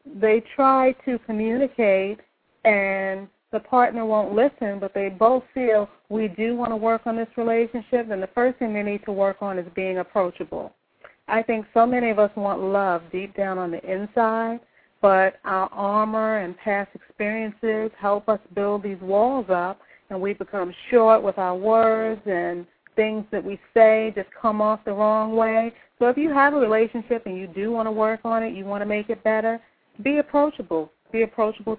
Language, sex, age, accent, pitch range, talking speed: English, female, 40-59, American, 200-235 Hz, 190 wpm